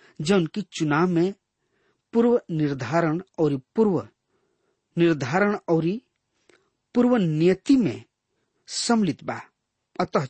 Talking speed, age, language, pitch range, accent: 95 wpm, 40-59, English, 140-205 Hz, Indian